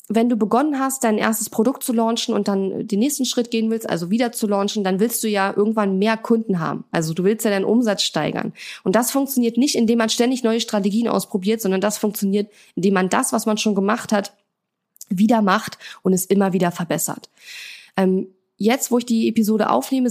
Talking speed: 205 wpm